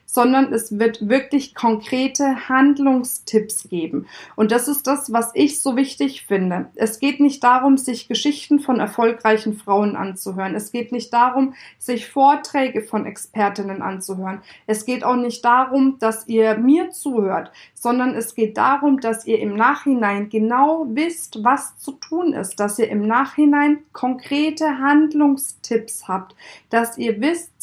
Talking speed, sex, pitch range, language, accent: 150 wpm, female, 225-285 Hz, German, German